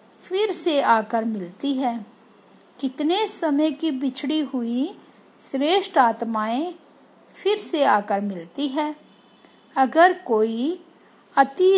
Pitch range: 235-315 Hz